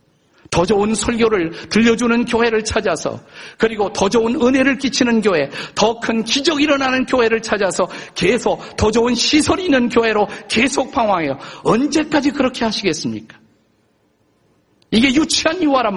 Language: Korean